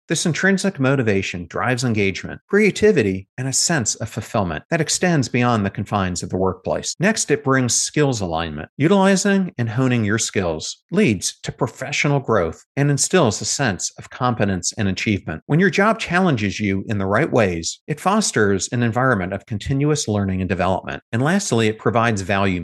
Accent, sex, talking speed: American, male, 170 wpm